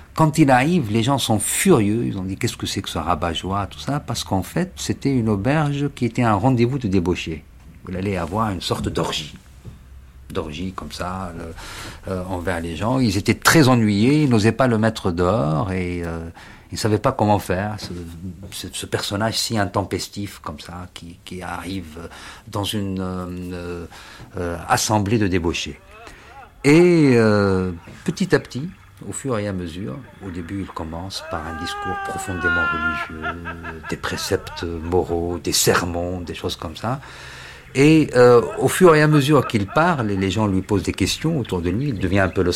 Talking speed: 190 wpm